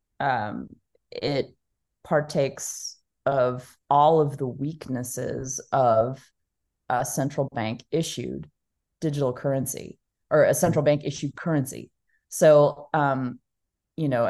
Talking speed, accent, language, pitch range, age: 105 wpm, American, English, 130-150 Hz, 30-49